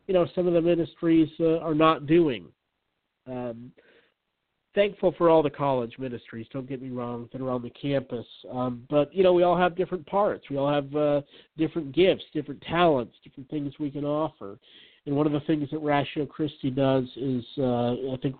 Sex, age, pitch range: male, 50-69, 125-155 Hz